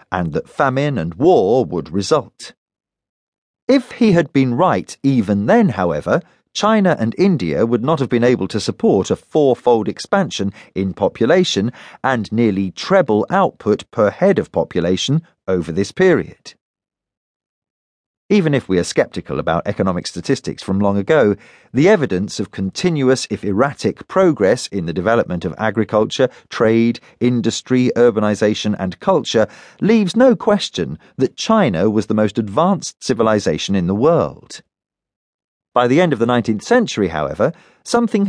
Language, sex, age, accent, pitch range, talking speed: English, male, 40-59, British, 100-160 Hz, 145 wpm